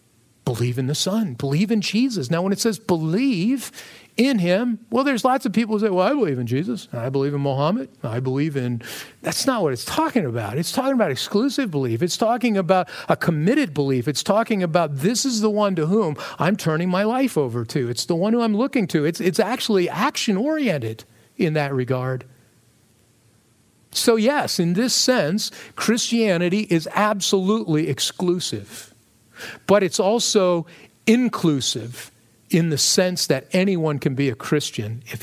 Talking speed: 175 wpm